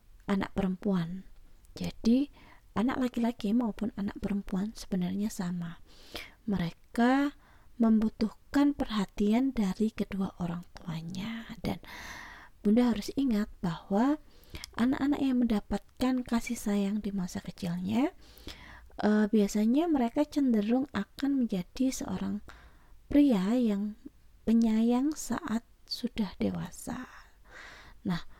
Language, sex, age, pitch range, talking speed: Indonesian, female, 20-39, 195-235 Hz, 95 wpm